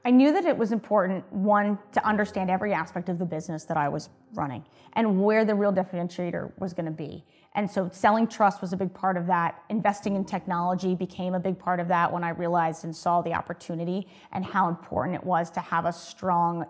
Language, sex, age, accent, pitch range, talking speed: English, female, 30-49, American, 170-205 Hz, 220 wpm